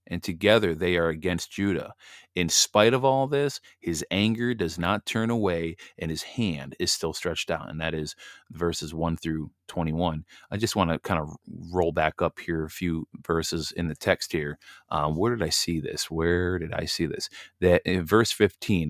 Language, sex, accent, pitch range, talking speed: English, male, American, 85-100 Hz, 200 wpm